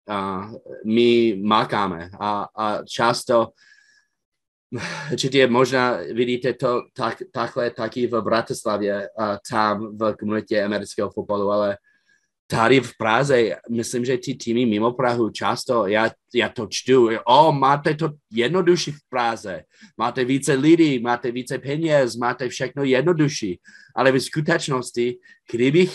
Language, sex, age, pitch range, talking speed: Slovak, male, 30-49, 115-145 Hz, 130 wpm